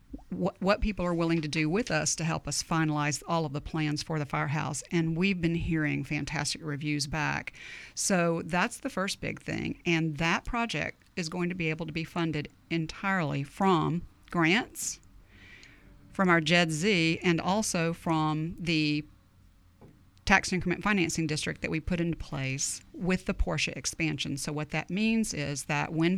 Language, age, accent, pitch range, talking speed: English, 40-59, American, 150-180 Hz, 165 wpm